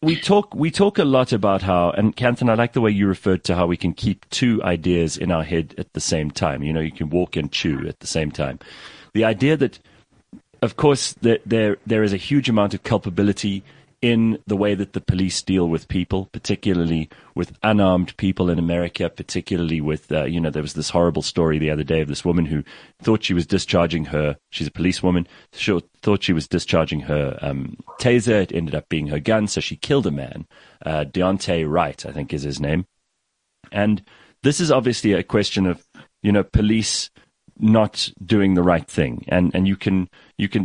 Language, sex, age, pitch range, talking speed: English, male, 30-49, 85-110 Hz, 210 wpm